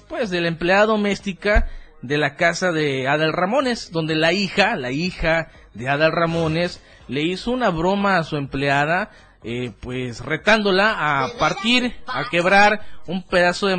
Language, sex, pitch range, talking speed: Spanish, male, 150-195 Hz, 155 wpm